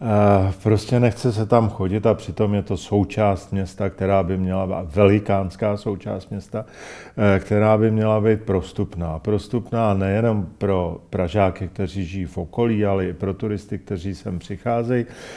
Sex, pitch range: male, 100-115 Hz